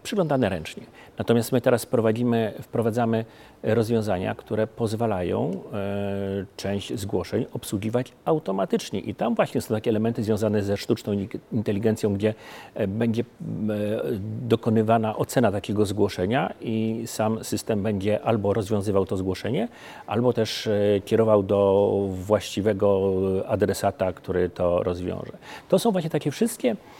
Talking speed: 115 wpm